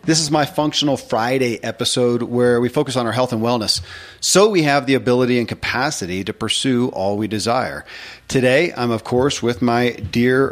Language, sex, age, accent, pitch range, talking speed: English, male, 40-59, American, 110-135 Hz, 190 wpm